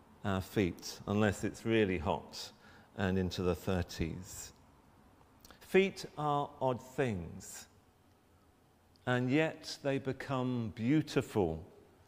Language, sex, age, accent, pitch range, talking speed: English, male, 50-69, British, 95-125 Hz, 95 wpm